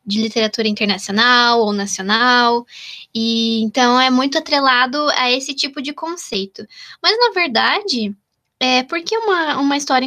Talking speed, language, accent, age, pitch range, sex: 145 wpm, Portuguese, Brazilian, 10-29, 245-305 Hz, female